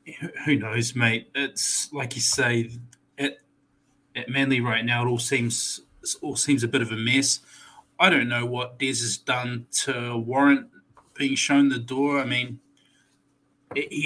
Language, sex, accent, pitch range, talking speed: English, male, Australian, 120-140 Hz, 170 wpm